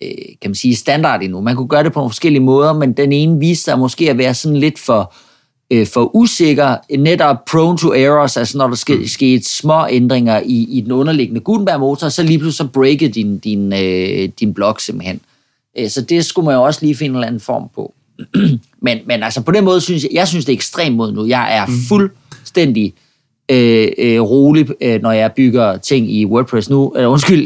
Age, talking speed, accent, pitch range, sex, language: 30-49, 205 wpm, native, 125-150 Hz, male, Danish